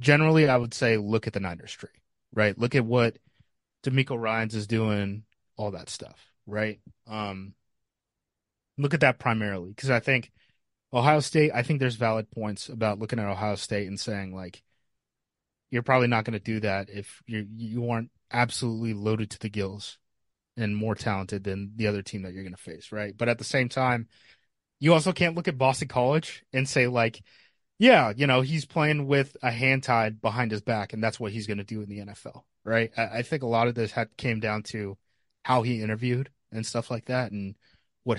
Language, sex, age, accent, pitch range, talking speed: English, male, 30-49, American, 105-125 Hz, 205 wpm